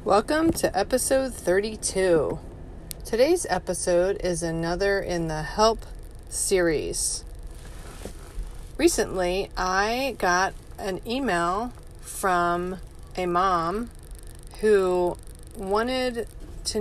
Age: 30-49